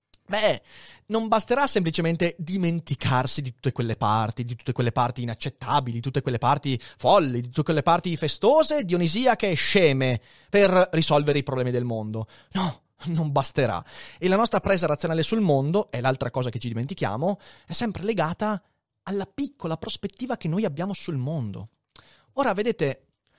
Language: Italian